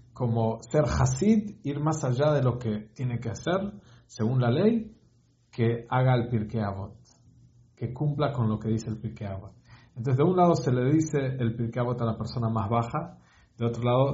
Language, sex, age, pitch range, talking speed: English, male, 40-59, 115-135 Hz, 200 wpm